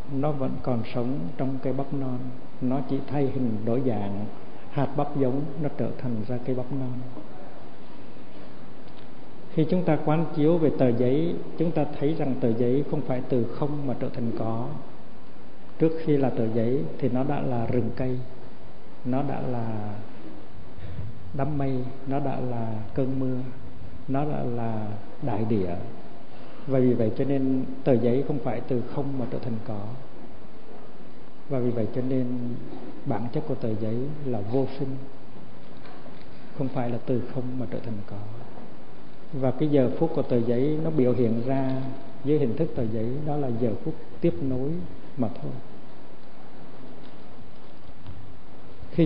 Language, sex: Vietnamese, male